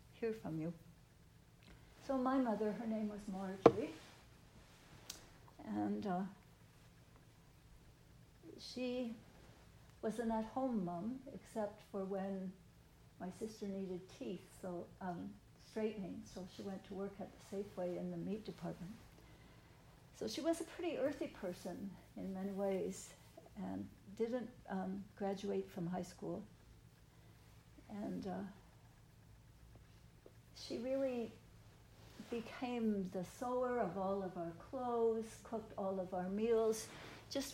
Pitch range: 175-225 Hz